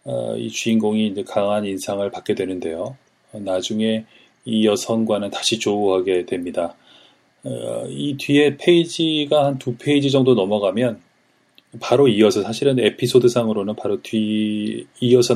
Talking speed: 105 wpm